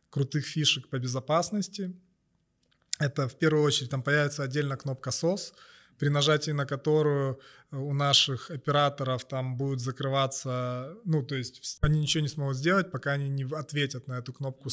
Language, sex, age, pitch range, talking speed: Ukrainian, male, 20-39, 130-150 Hz, 155 wpm